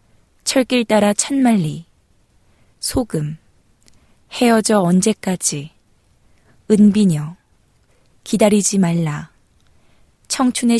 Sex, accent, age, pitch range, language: female, native, 20-39, 160-210 Hz, Korean